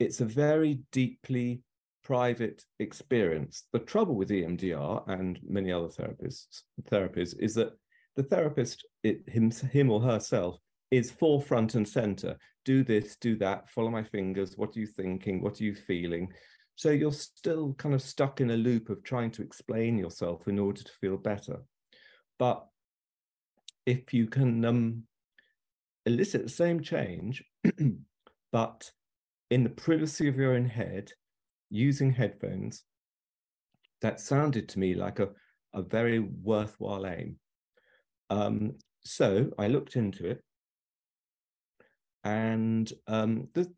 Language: English